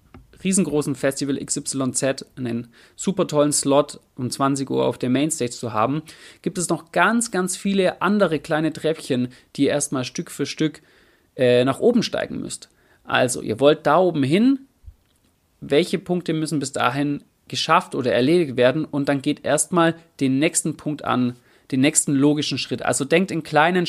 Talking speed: 165 wpm